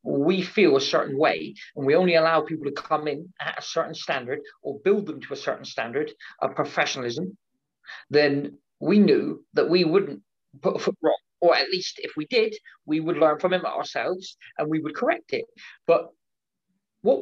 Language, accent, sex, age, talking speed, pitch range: English, British, male, 40-59, 190 wpm, 155-225 Hz